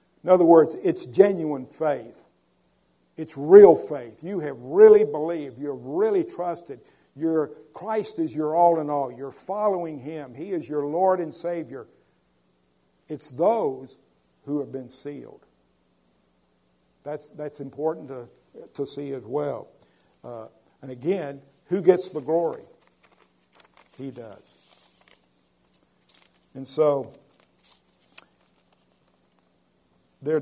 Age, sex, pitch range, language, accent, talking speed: 50-69, male, 115-160 Hz, English, American, 115 wpm